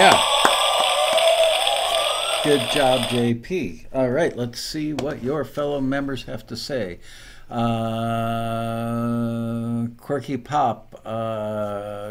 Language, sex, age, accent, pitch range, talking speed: English, male, 60-79, American, 110-130 Hz, 90 wpm